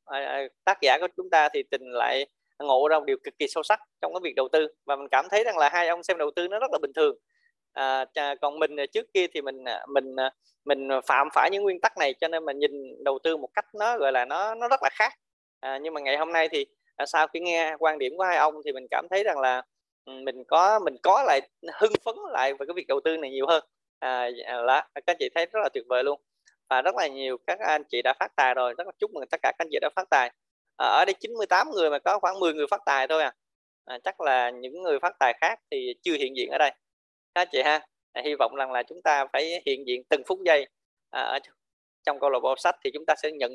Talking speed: 270 wpm